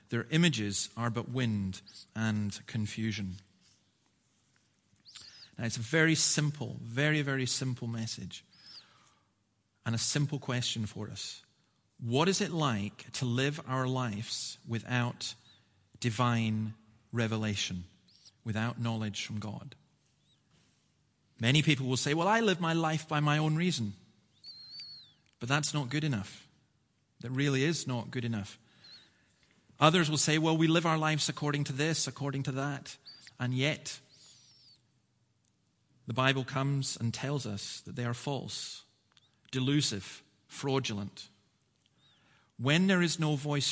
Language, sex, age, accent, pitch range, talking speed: English, male, 40-59, British, 110-140 Hz, 130 wpm